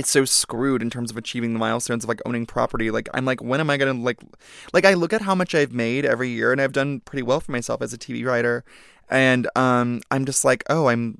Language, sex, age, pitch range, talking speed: English, male, 20-39, 125-155 Hz, 270 wpm